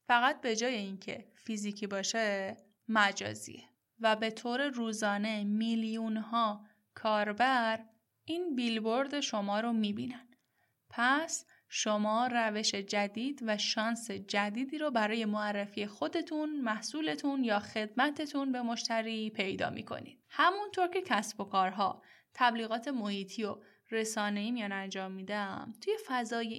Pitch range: 205-240 Hz